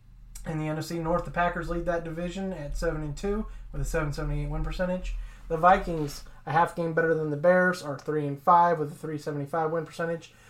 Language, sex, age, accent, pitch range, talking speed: English, male, 20-39, American, 150-180 Hz, 195 wpm